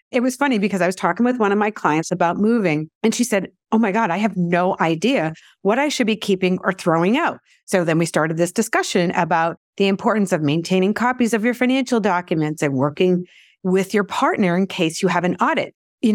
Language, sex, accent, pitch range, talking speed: English, female, American, 175-225 Hz, 225 wpm